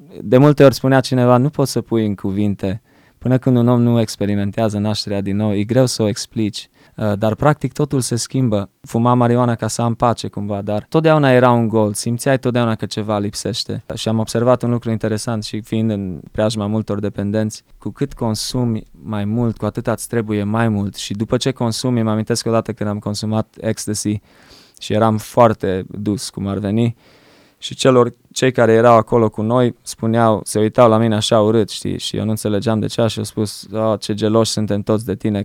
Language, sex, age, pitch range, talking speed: Romanian, male, 20-39, 105-120 Hz, 205 wpm